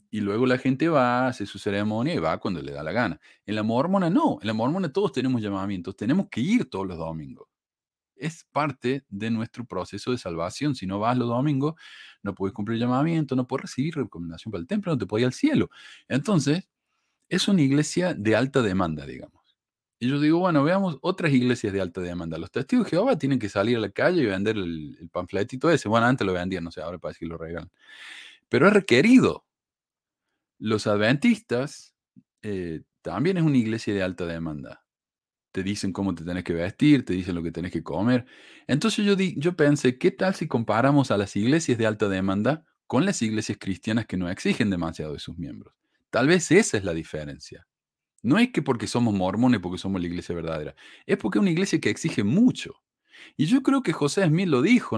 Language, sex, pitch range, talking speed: Spanish, male, 95-150 Hz, 210 wpm